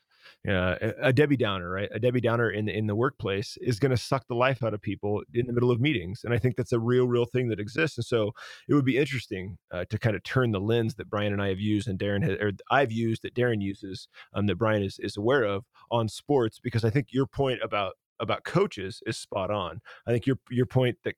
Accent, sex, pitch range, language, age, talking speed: American, male, 105-130 Hz, English, 30-49, 260 wpm